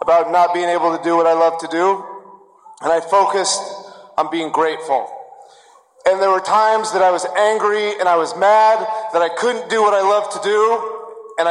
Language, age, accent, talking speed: English, 40-59, American, 205 wpm